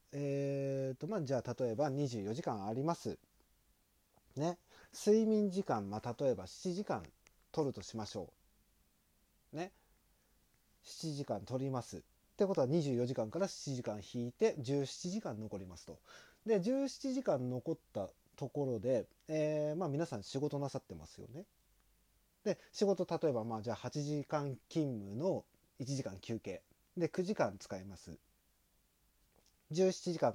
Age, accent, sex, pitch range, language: 30-49, native, male, 115-180 Hz, Japanese